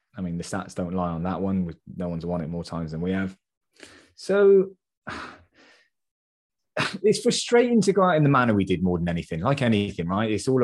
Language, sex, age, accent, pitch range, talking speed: English, male, 20-39, British, 85-115 Hz, 210 wpm